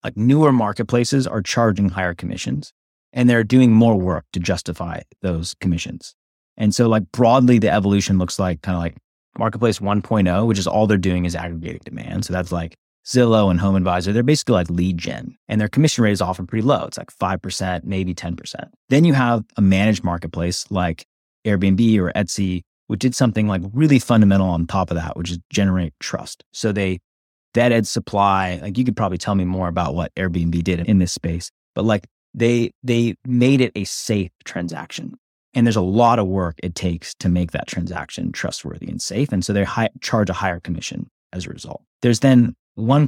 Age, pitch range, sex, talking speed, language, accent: 30-49, 90-115 Hz, male, 200 wpm, English, American